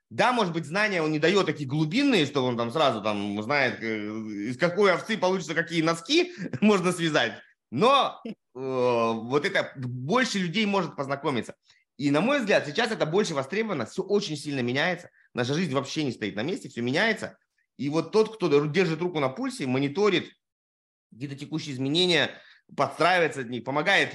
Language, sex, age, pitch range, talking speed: Russian, male, 20-39, 130-195 Hz, 165 wpm